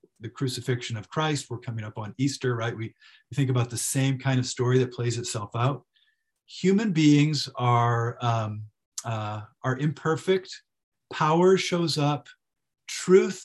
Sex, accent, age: male, American, 40-59